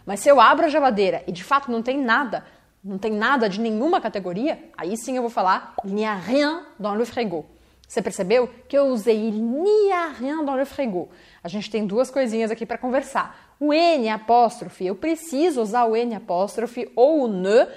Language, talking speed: Portuguese, 190 wpm